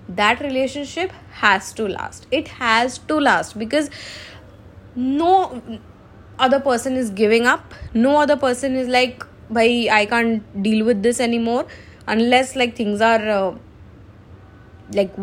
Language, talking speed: English, 135 wpm